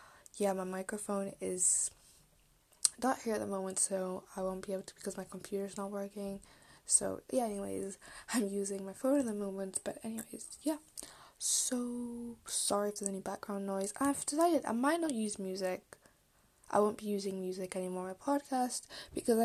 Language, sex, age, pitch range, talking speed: English, female, 10-29, 190-235 Hz, 175 wpm